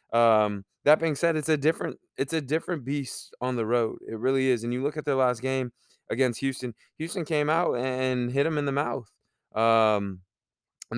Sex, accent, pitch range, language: male, American, 110-140 Hz, English